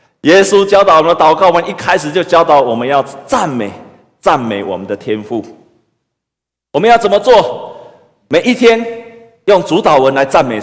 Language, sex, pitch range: Chinese, male, 155-215 Hz